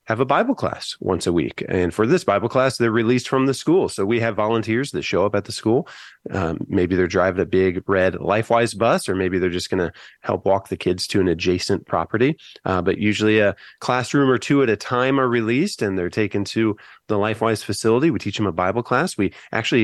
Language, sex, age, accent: English, male, 30-49, American